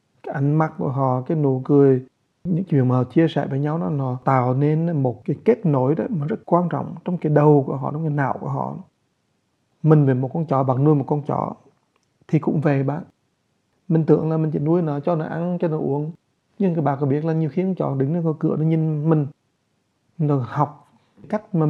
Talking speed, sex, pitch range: 245 wpm, male, 135-165 Hz